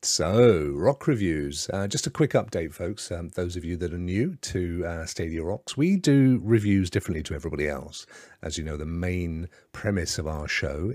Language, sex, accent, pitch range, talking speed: English, male, British, 80-110 Hz, 195 wpm